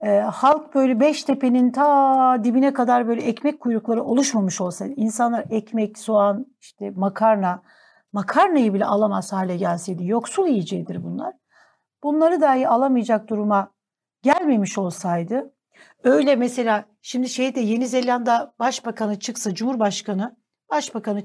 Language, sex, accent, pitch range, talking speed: Turkish, female, native, 210-265 Hz, 120 wpm